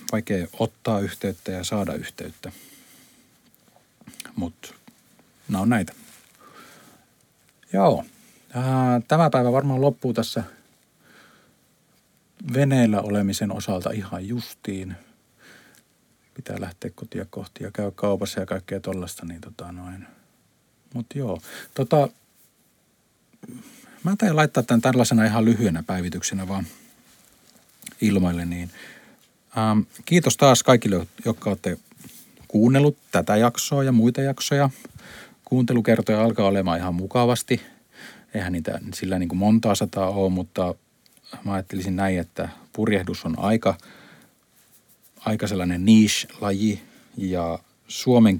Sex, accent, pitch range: male, native, 90-120 Hz